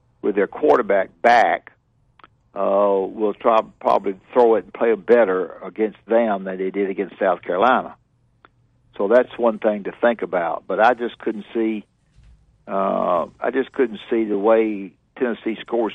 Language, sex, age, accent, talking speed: English, male, 60-79, American, 160 wpm